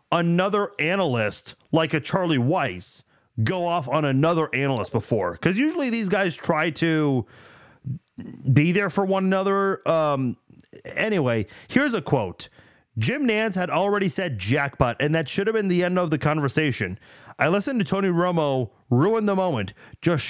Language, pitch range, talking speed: English, 140-190 Hz, 155 wpm